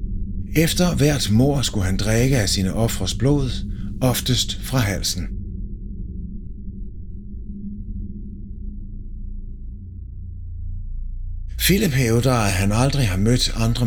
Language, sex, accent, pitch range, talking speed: Danish, male, native, 95-130 Hz, 90 wpm